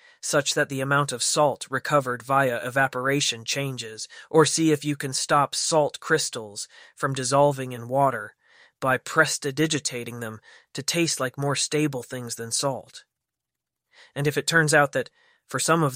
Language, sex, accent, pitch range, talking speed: English, male, American, 130-145 Hz, 160 wpm